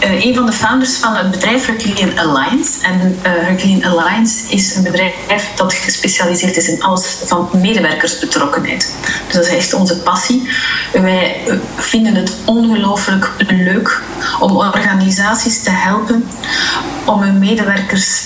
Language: Dutch